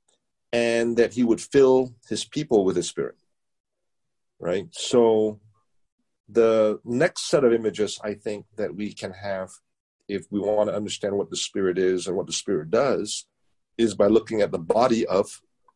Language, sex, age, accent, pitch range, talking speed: English, male, 50-69, American, 105-145 Hz, 170 wpm